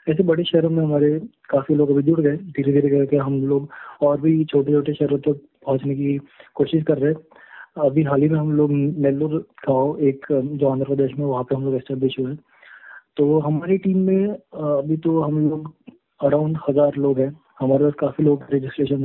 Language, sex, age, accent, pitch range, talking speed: Hindi, male, 20-39, native, 140-155 Hz, 175 wpm